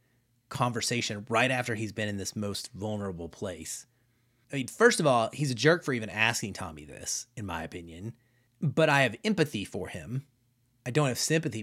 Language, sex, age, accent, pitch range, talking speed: English, male, 30-49, American, 110-140 Hz, 185 wpm